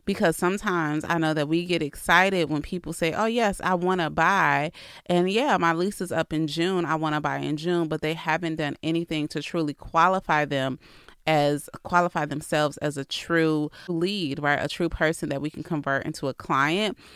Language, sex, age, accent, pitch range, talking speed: English, female, 30-49, American, 145-175 Hz, 205 wpm